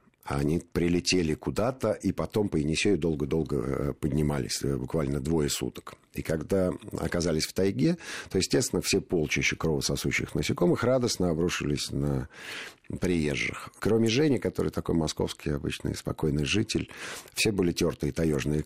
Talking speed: 125 wpm